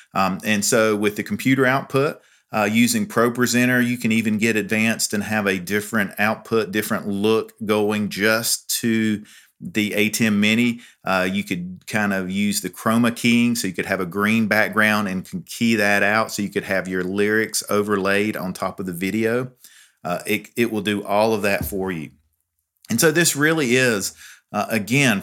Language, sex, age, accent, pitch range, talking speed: English, male, 40-59, American, 100-120 Hz, 185 wpm